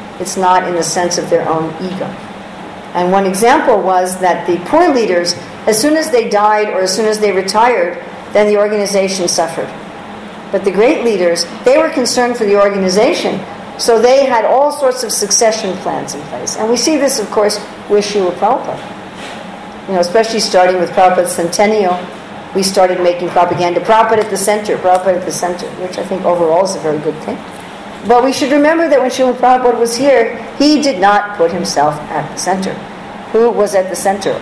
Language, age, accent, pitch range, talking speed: English, 50-69, American, 180-235 Hz, 195 wpm